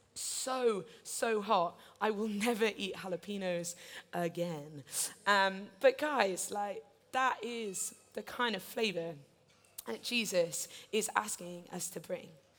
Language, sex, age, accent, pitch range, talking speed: English, female, 20-39, British, 170-240 Hz, 125 wpm